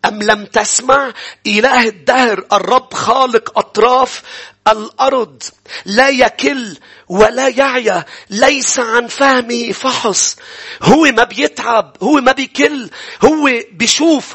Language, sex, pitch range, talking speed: English, male, 210-285 Hz, 105 wpm